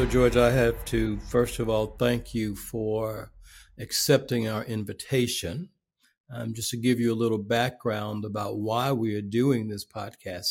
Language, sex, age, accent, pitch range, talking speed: English, male, 60-79, American, 115-135 Hz, 165 wpm